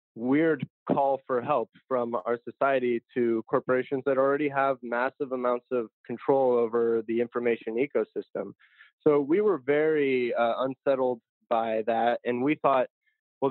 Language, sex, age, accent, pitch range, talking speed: English, male, 20-39, American, 120-150 Hz, 140 wpm